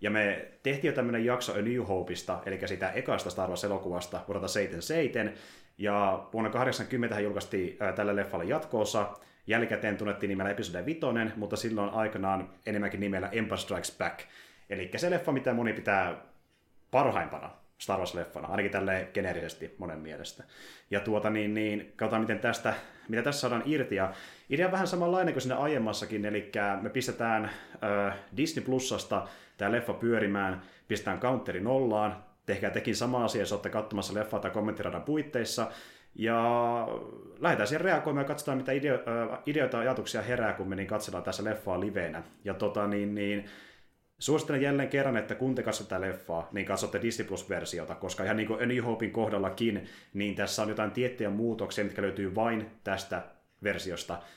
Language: Finnish